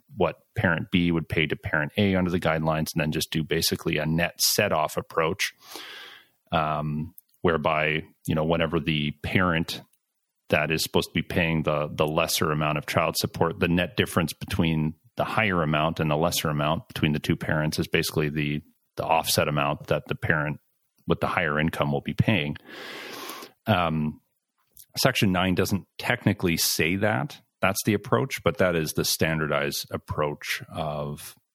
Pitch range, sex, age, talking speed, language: 75-85 Hz, male, 40-59, 170 wpm, English